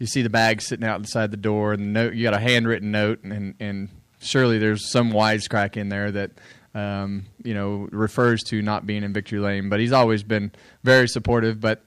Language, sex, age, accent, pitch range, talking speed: English, male, 20-39, American, 105-120 Hz, 220 wpm